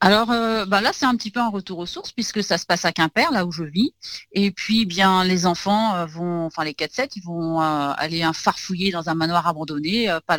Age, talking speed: 40-59, 255 wpm